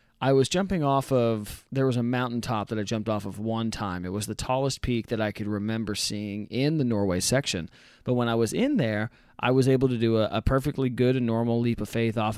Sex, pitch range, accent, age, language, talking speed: male, 105-125 Hz, American, 30-49, English, 250 wpm